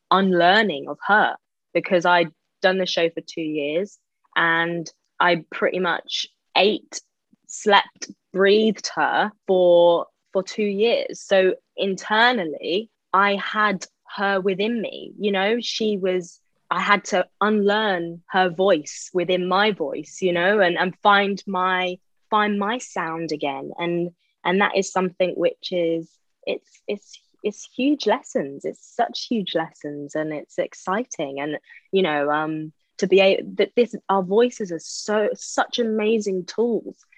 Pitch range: 170-200 Hz